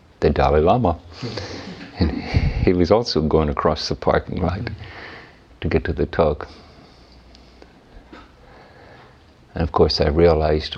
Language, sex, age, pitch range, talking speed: English, male, 50-69, 75-90 Hz, 120 wpm